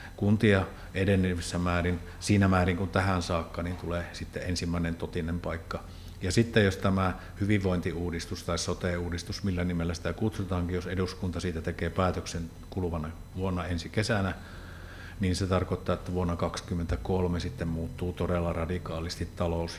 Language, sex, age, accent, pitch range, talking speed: Finnish, male, 50-69, native, 85-95 Hz, 135 wpm